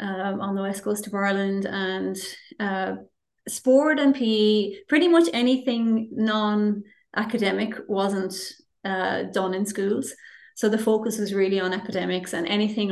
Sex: female